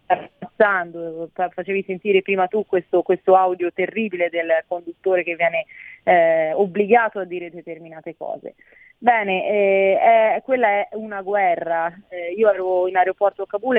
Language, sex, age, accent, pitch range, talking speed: Italian, female, 30-49, native, 175-210 Hz, 145 wpm